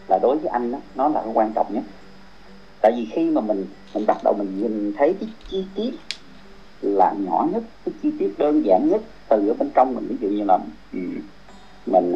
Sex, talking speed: male, 210 wpm